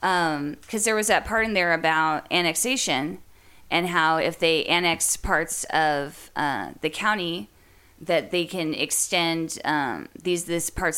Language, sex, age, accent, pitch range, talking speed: English, female, 20-39, American, 145-175 Hz, 155 wpm